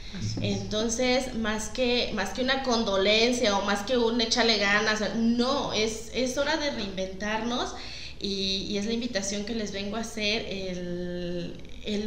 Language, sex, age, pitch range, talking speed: Spanish, female, 20-39, 190-230 Hz, 155 wpm